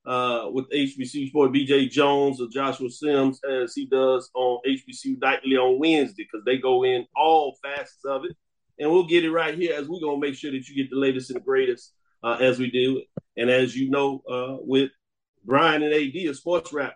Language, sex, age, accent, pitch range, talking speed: English, male, 40-59, American, 135-170 Hz, 210 wpm